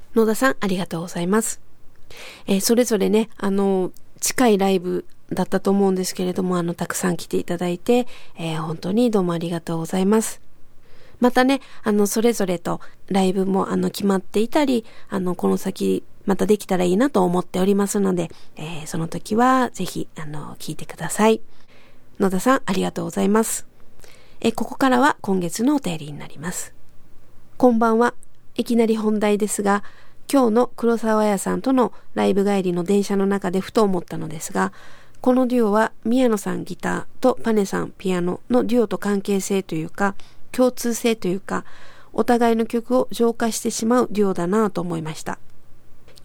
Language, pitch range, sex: Japanese, 180-230 Hz, female